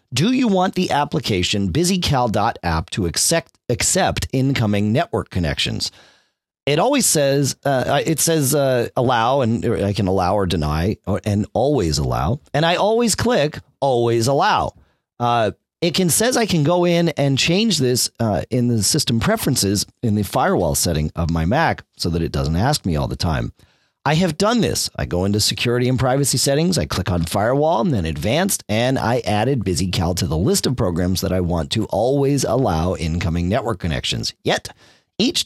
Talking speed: 180 wpm